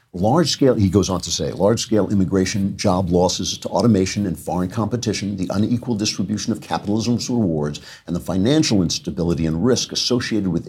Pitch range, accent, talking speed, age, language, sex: 85-110 Hz, American, 165 wpm, 50-69, English, male